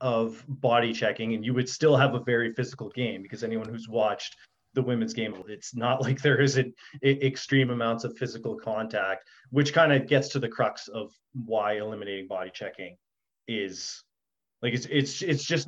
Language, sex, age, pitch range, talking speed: English, male, 30-49, 110-135 Hz, 180 wpm